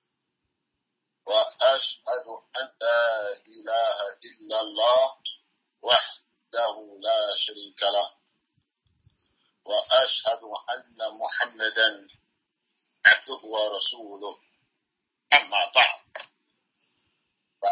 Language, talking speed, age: English, 75 wpm, 50-69